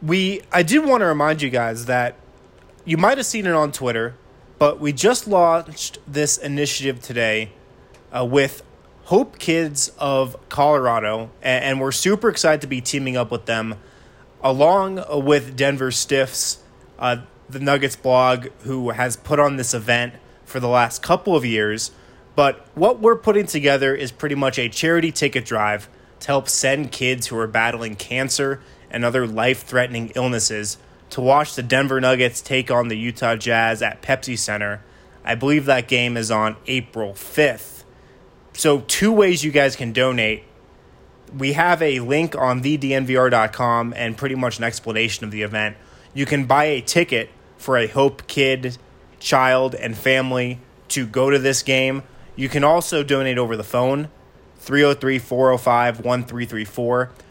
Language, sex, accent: English, male, American